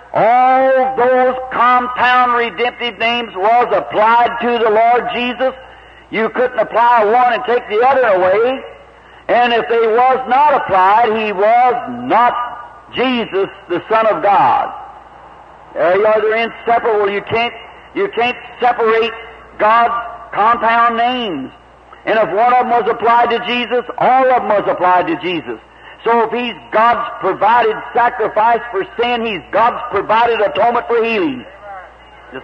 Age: 60-79